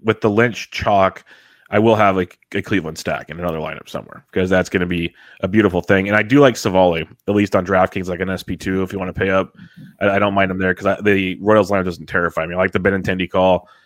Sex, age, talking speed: male, 30-49, 255 wpm